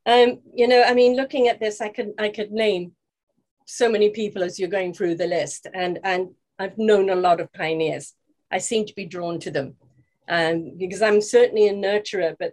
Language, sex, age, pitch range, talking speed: English, female, 40-59, 185-235 Hz, 210 wpm